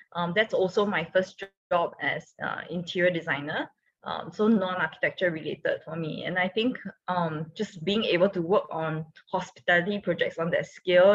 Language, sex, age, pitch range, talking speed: English, female, 20-39, 170-210 Hz, 170 wpm